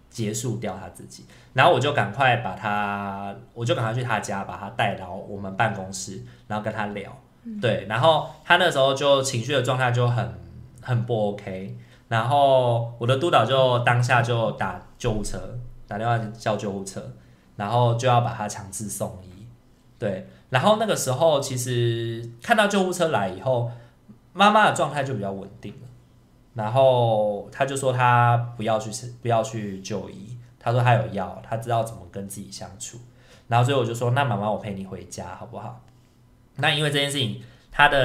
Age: 20-39